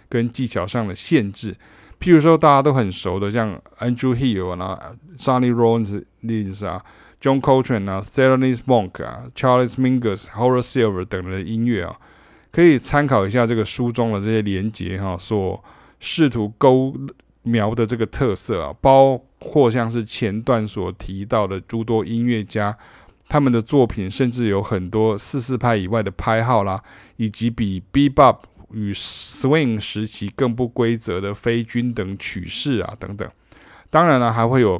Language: Chinese